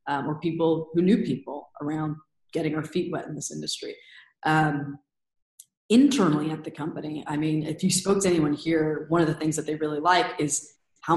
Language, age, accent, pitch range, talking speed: English, 20-39, American, 150-170 Hz, 200 wpm